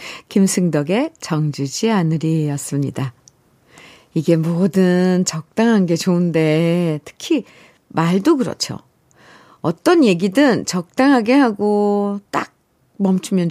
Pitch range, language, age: 155-210 Hz, Korean, 50-69